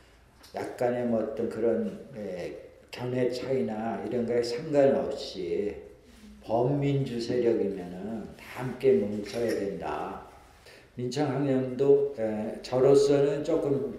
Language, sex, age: Korean, male, 60-79